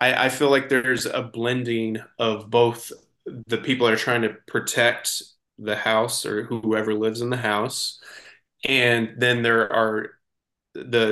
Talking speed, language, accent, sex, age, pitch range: 150 wpm, English, American, male, 20-39, 110-130 Hz